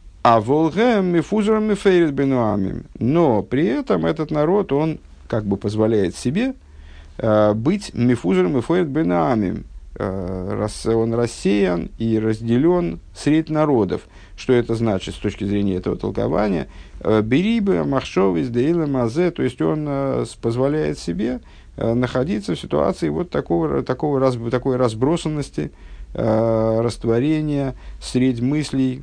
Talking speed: 115 wpm